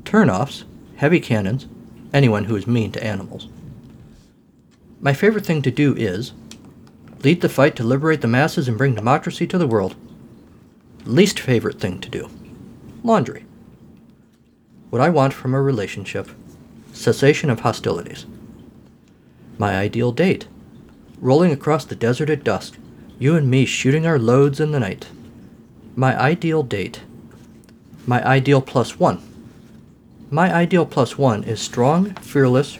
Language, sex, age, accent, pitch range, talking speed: English, male, 50-69, American, 115-150 Hz, 135 wpm